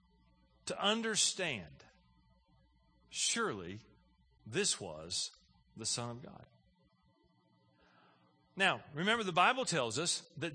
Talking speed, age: 90 wpm, 40-59